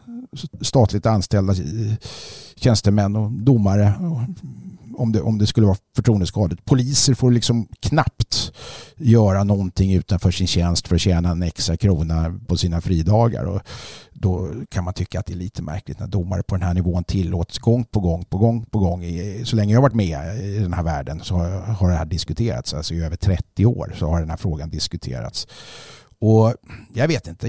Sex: male